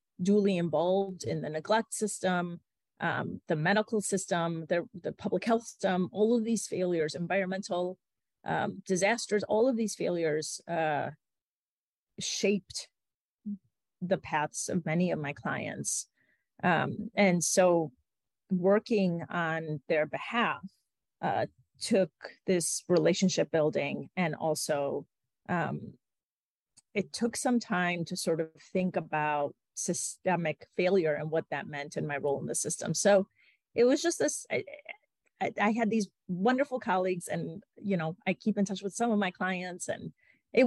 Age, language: 30-49, English